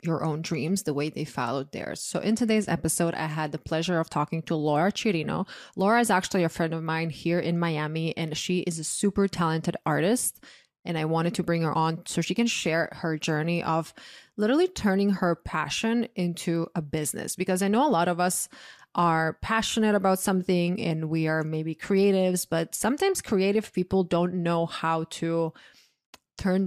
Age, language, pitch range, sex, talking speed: 20-39, English, 160-185 Hz, female, 190 wpm